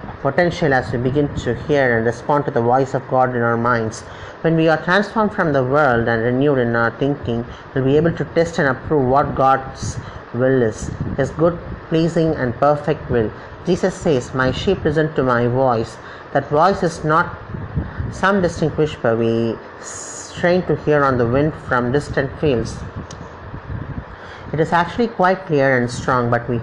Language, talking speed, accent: English, 180 wpm, Indian